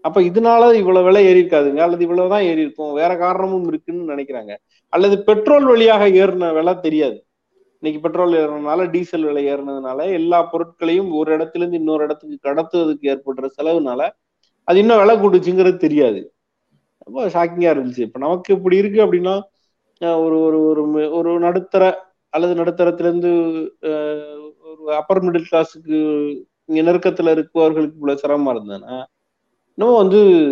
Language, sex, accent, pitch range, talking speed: Tamil, male, native, 145-195 Hz, 150 wpm